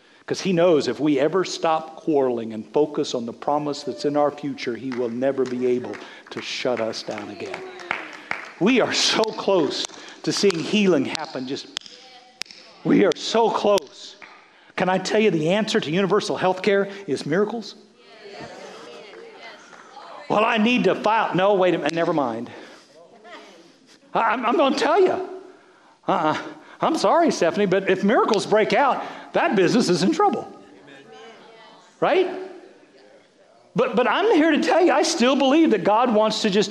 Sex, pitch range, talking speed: male, 185-265 Hz, 160 wpm